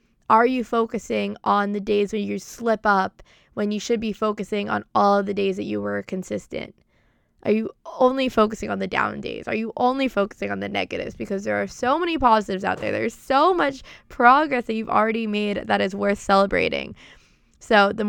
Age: 20-39